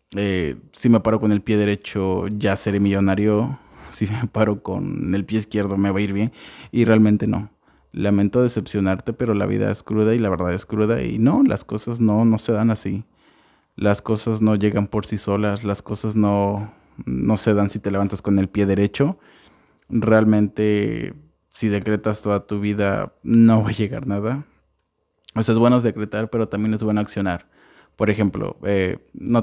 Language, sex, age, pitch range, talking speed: Spanish, male, 20-39, 100-110 Hz, 190 wpm